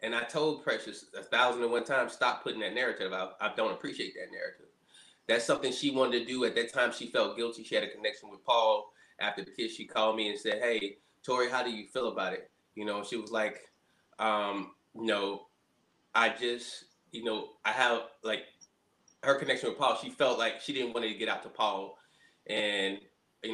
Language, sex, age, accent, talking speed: English, male, 20-39, American, 215 wpm